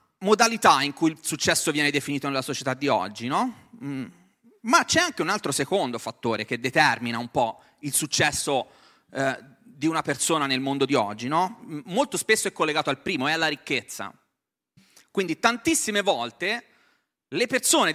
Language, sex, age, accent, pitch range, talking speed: Italian, male, 30-49, native, 145-220 Hz, 160 wpm